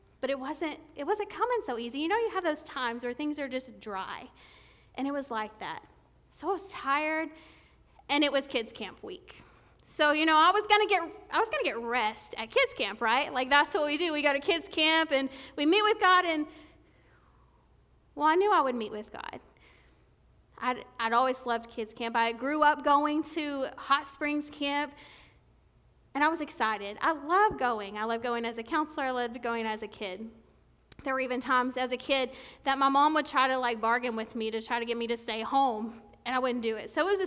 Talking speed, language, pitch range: 225 wpm, English, 235-315 Hz